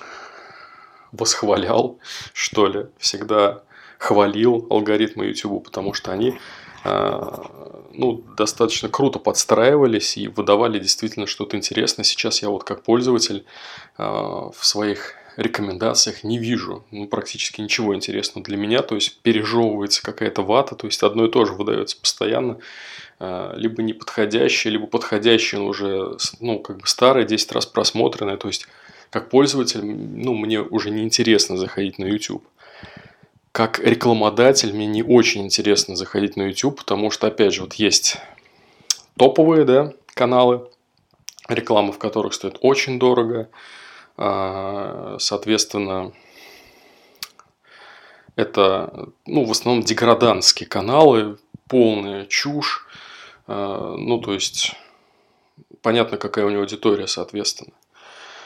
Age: 20-39